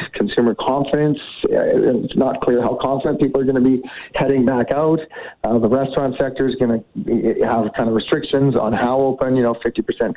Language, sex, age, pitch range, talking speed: English, male, 40-59, 110-130 Hz, 190 wpm